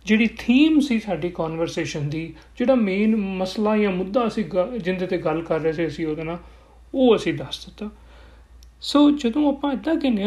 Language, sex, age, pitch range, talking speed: Punjabi, male, 40-59, 170-250 Hz, 185 wpm